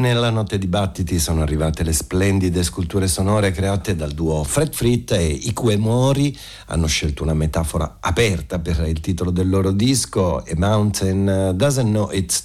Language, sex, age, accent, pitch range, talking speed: Italian, male, 50-69, native, 80-100 Hz, 170 wpm